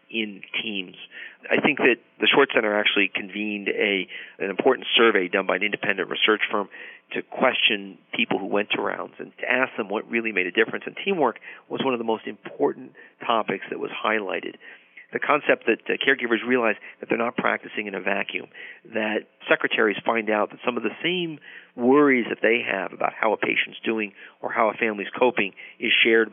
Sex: male